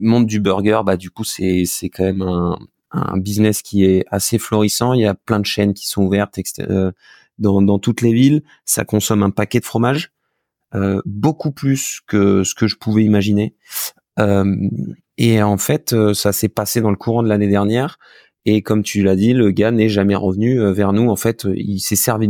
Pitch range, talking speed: 100-115 Hz, 205 wpm